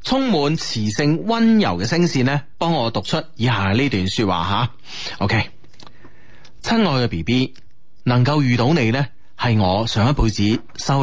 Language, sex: Chinese, male